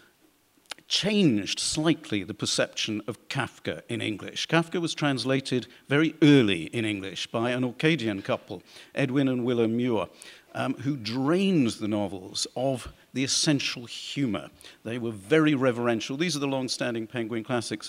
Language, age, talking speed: English, 50-69, 140 wpm